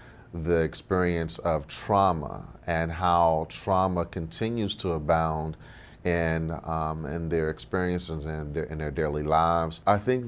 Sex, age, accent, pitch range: male, 40-59, American, 80-95 Hz